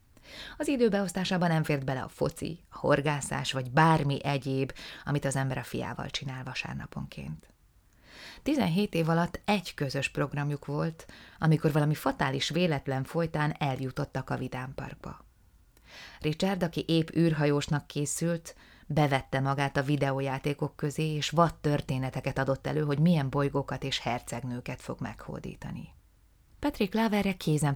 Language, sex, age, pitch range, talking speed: Hungarian, female, 30-49, 135-165 Hz, 130 wpm